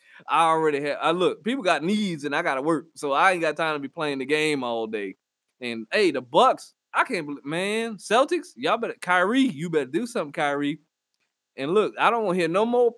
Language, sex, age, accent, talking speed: English, male, 20-39, American, 235 wpm